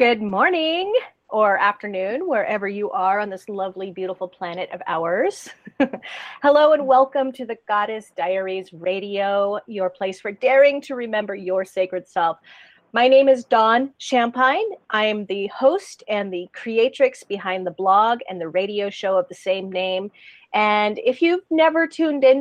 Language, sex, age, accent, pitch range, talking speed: English, female, 30-49, American, 190-260 Hz, 160 wpm